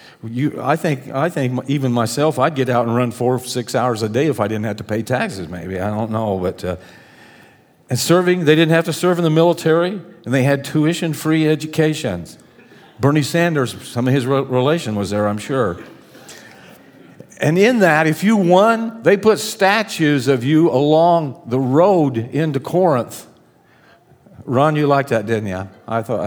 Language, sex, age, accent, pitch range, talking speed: English, male, 50-69, American, 110-150 Hz, 185 wpm